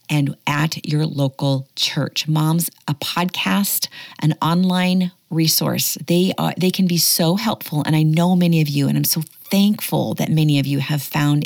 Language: English